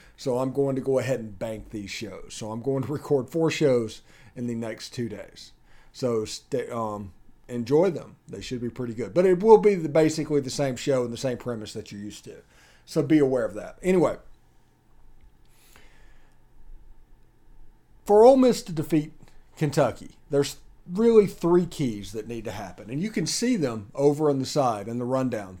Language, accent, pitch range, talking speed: English, American, 120-160 Hz, 185 wpm